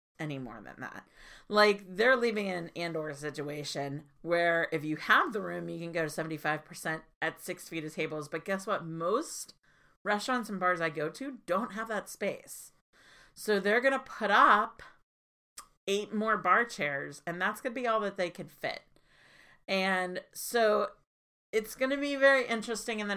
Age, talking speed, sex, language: 40-59, 185 wpm, female, English